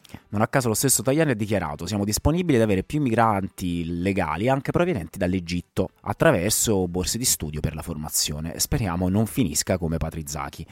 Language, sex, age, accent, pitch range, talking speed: Italian, male, 30-49, native, 85-115 Hz, 170 wpm